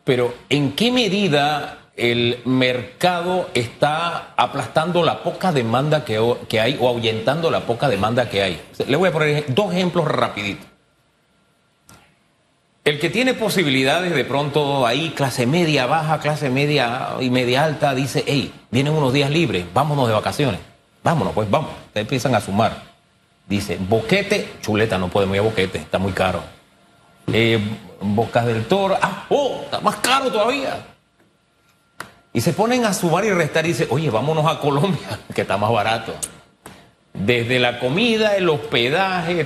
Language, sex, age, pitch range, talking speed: Spanish, male, 40-59, 120-175 Hz, 155 wpm